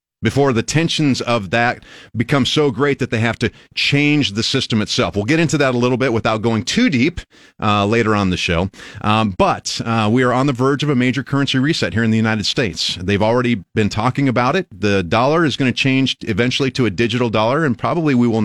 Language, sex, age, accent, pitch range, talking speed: English, male, 30-49, American, 110-145 Hz, 230 wpm